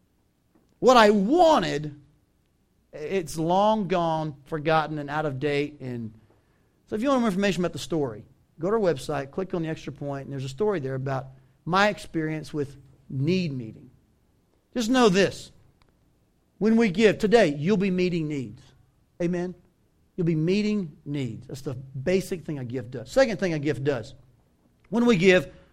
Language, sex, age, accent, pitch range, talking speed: English, male, 40-59, American, 145-215 Hz, 170 wpm